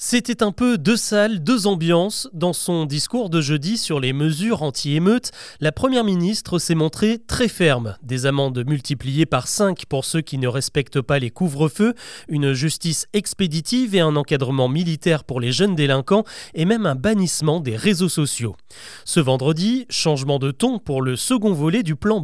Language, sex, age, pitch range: French, male, 30-49, 145-205 Hz